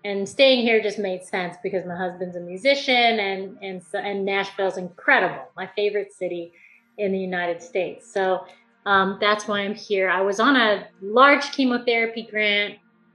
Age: 30-49